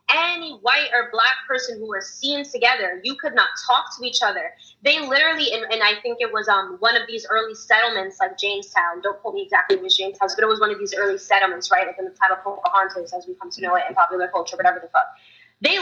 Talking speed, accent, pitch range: 245 wpm, American, 210-285 Hz